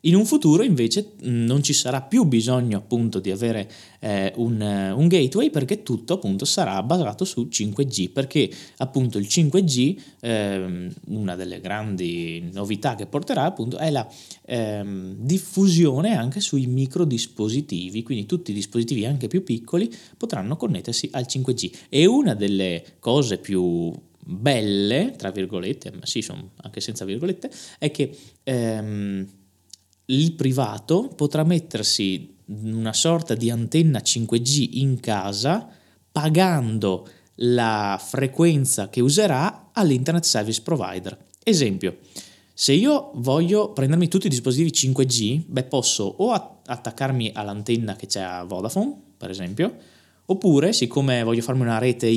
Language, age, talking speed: Italian, 20-39, 135 wpm